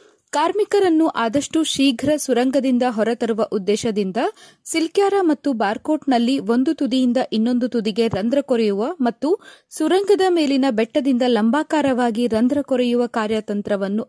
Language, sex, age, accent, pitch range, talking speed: Kannada, female, 20-39, native, 230-315 Hz, 100 wpm